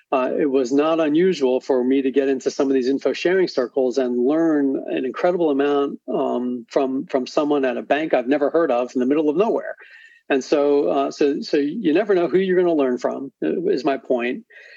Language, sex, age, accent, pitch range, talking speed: English, male, 40-59, American, 130-150 Hz, 220 wpm